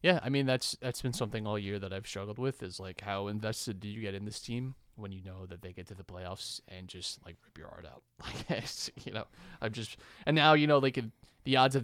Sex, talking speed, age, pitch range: male, 270 wpm, 20-39, 95-115 Hz